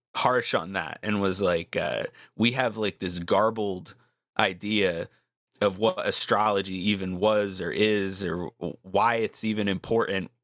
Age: 30-49